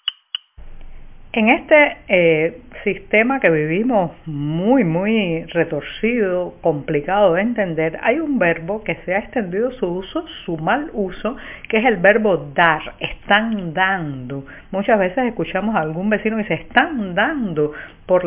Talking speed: 140 wpm